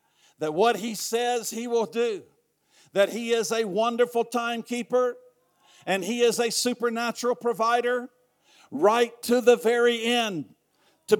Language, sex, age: English, male, 50-69